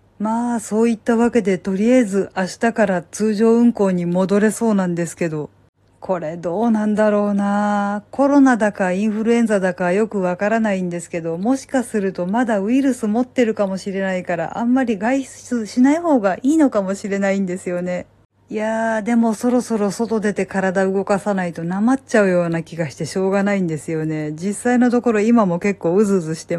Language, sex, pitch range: Japanese, female, 175-220 Hz